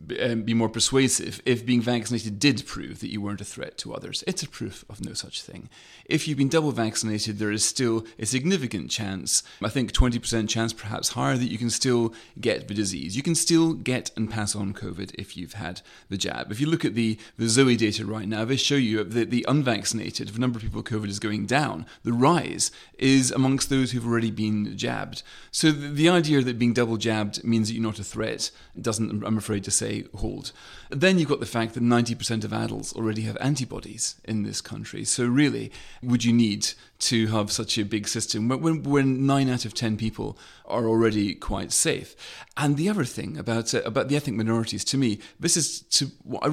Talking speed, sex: 215 wpm, male